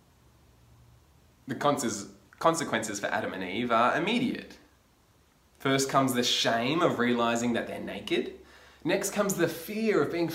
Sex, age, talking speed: male, 20-39, 135 wpm